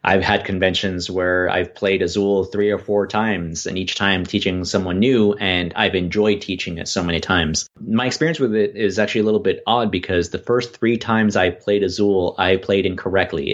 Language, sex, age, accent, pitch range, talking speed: English, male, 30-49, American, 90-120 Hz, 205 wpm